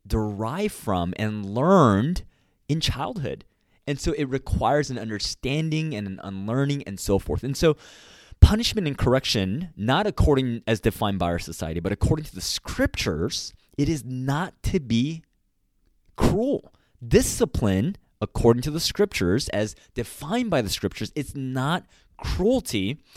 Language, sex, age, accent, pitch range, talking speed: English, male, 20-39, American, 100-140 Hz, 140 wpm